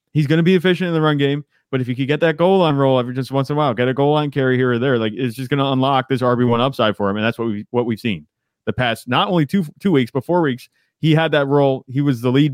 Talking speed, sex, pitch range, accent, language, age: 330 wpm, male, 120-140 Hz, American, English, 30-49